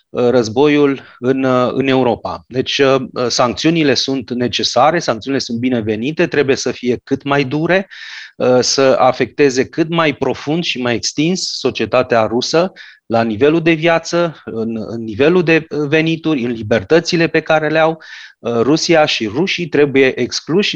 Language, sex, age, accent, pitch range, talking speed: Romanian, male, 30-49, native, 120-155 Hz, 135 wpm